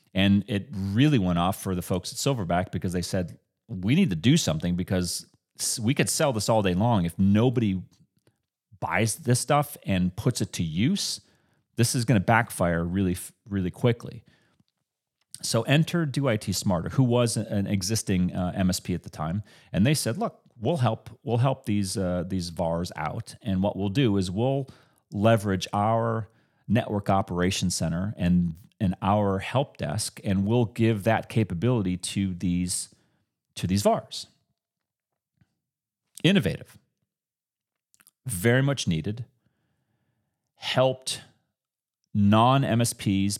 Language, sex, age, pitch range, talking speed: English, male, 30-49, 95-125 Hz, 140 wpm